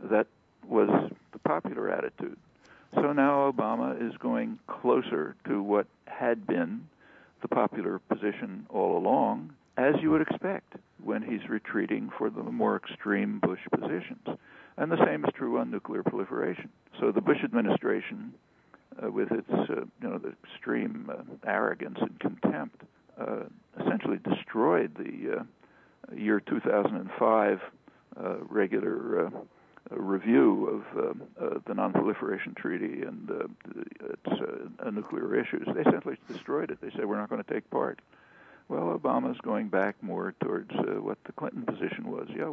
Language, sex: English, male